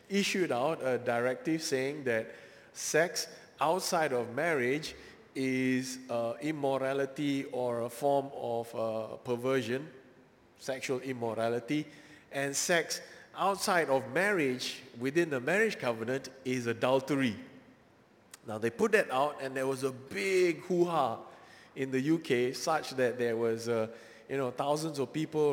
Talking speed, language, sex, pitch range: 130 wpm, English, male, 120-150 Hz